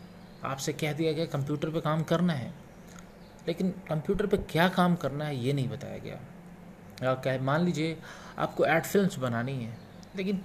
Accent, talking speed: native, 165 wpm